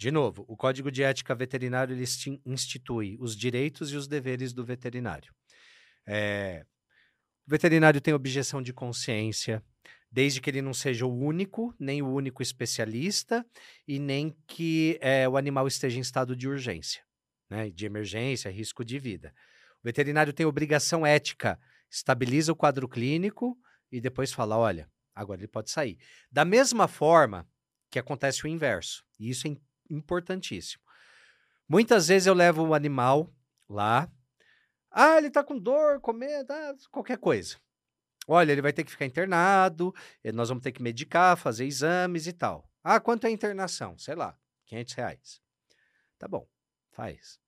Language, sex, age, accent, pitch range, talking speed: Portuguese, male, 40-59, Brazilian, 120-155 Hz, 155 wpm